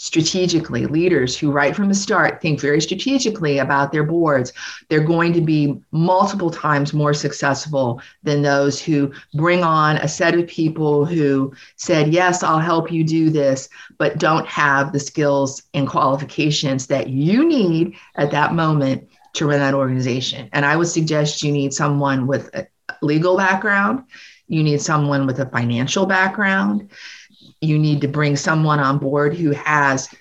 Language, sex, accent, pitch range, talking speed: English, female, American, 140-170 Hz, 165 wpm